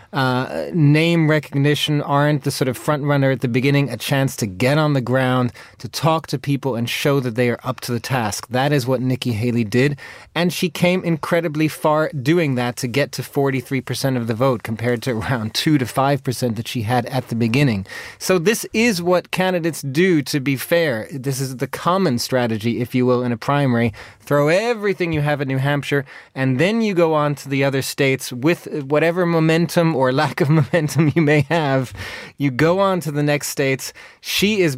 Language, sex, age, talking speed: English, male, 30-49, 205 wpm